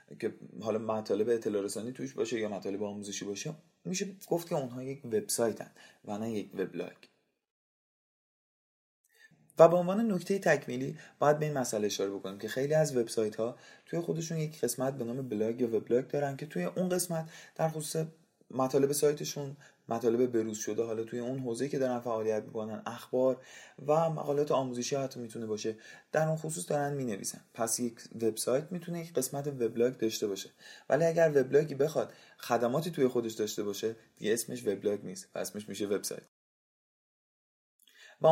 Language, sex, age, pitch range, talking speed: Persian, male, 30-49, 110-155 Hz, 165 wpm